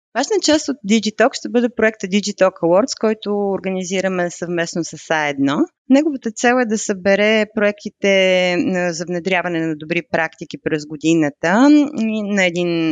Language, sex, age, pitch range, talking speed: Bulgarian, female, 30-49, 165-220 Hz, 135 wpm